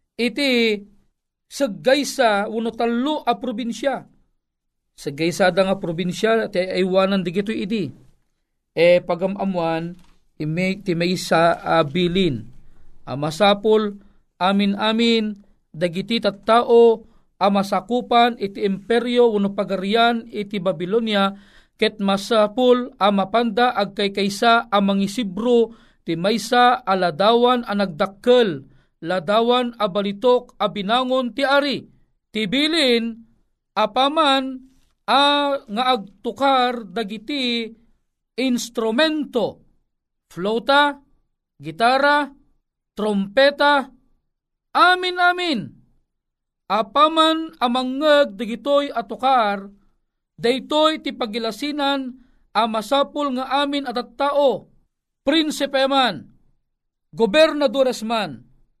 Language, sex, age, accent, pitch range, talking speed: Filipino, male, 40-59, native, 195-260 Hz, 80 wpm